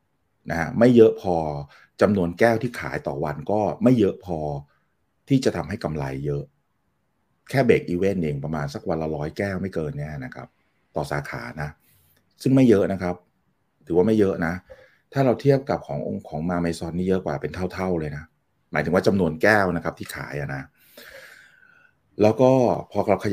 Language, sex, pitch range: Thai, male, 75-100 Hz